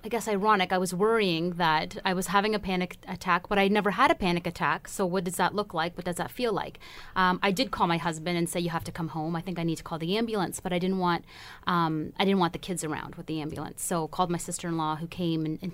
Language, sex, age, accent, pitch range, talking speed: English, female, 30-49, American, 175-215 Hz, 285 wpm